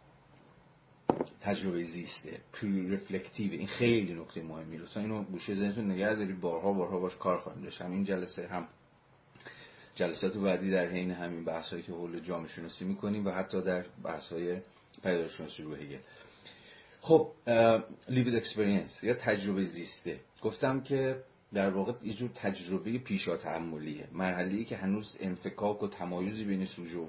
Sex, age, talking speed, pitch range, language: male, 40-59, 135 wpm, 85-110 Hz, Persian